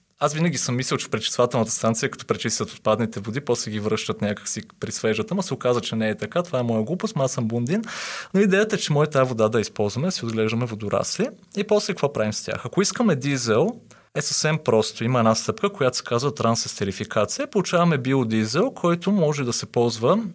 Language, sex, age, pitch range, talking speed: Bulgarian, male, 30-49, 110-155 Hz, 205 wpm